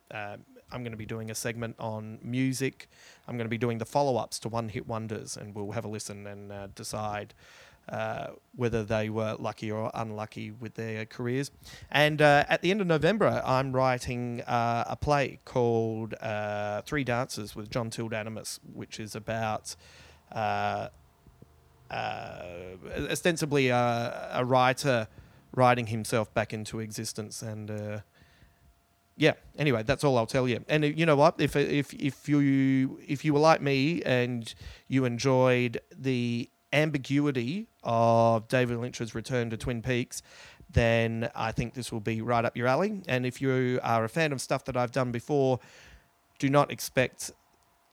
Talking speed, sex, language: 165 wpm, male, English